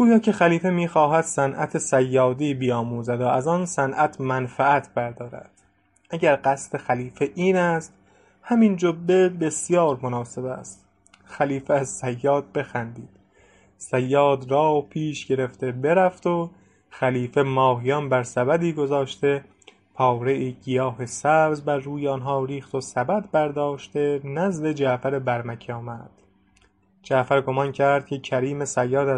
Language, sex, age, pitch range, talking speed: English, male, 20-39, 125-155 Hz, 120 wpm